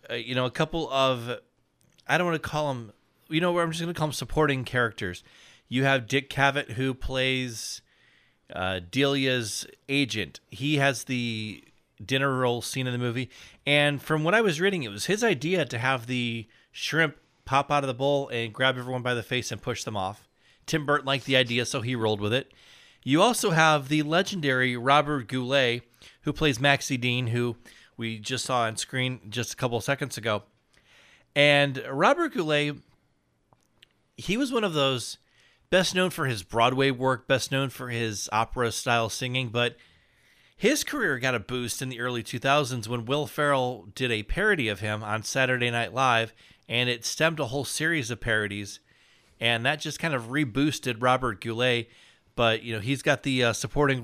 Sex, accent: male, American